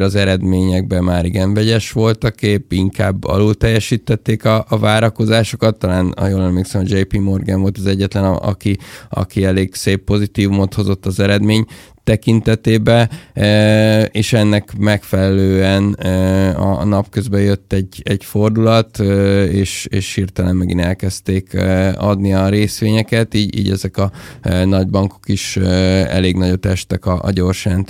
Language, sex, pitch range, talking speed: Hungarian, male, 95-105 Hz, 140 wpm